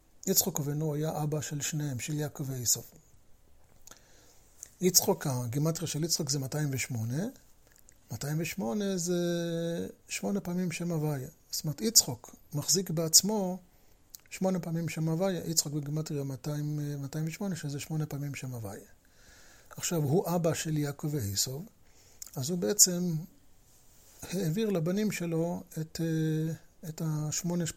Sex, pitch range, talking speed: male, 140-170 Hz, 110 wpm